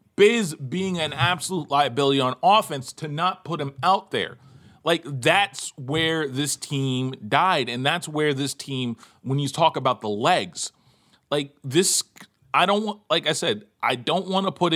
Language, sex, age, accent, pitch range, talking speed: English, male, 30-49, American, 125-160 Hz, 175 wpm